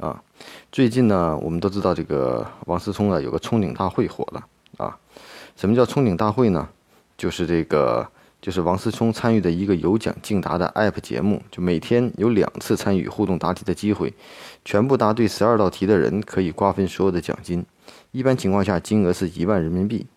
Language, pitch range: Chinese, 95-115 Hz